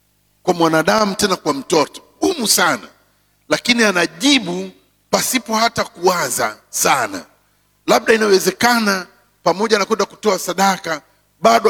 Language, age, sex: English, 50-69, male